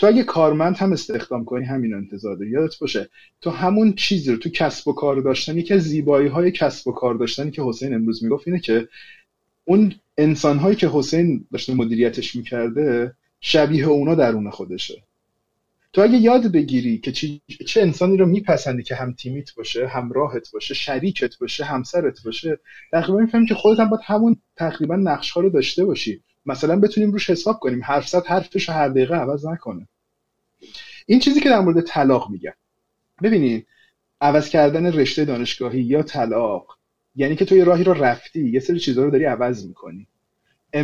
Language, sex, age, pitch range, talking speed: Persian, male, 30-49, 130-185 Hz, 170 wpm